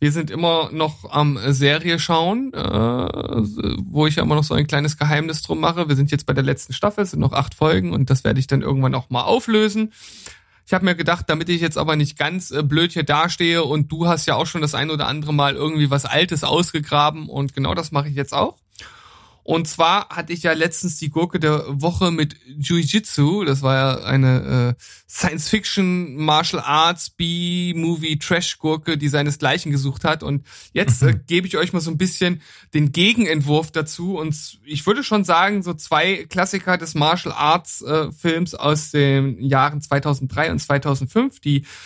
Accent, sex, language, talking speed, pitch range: German, male, German, 180 wpm, 145-175 Hz